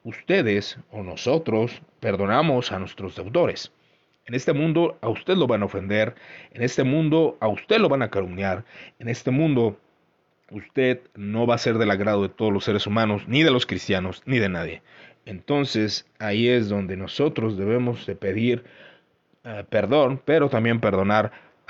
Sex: male